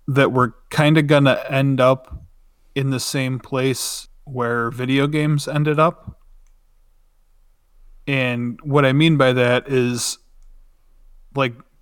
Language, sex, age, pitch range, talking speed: English, male, 20-39, 115-130 Hz, 125 wpm